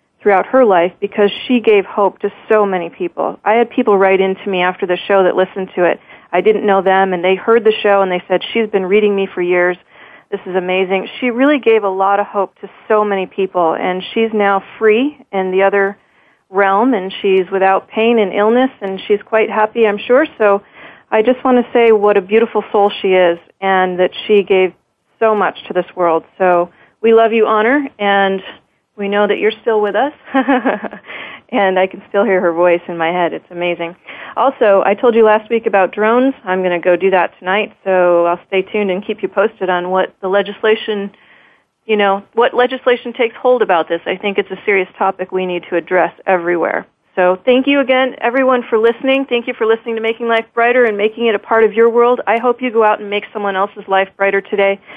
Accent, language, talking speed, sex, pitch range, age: American, English, 225 wpm, female, 185-225 Hz, 40-59